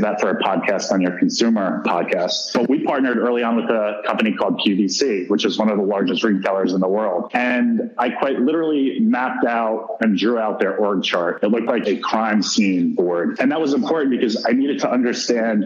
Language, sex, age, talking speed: English, male, 30-49, 215 wpm